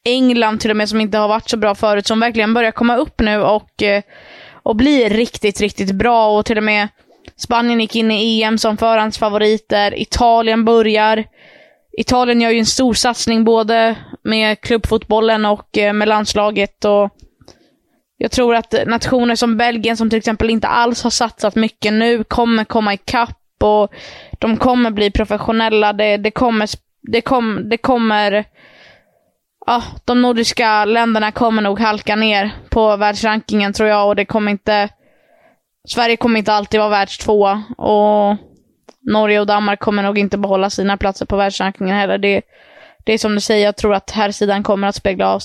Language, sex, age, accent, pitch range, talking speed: Swedish, female, 20-39, native, 210-230 Hz, 175 wpm